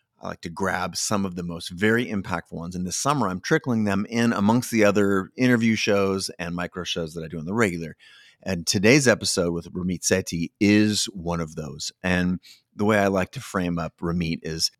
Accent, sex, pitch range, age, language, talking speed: American, male, 90-115 Hz, 30-49, English, 210 wpm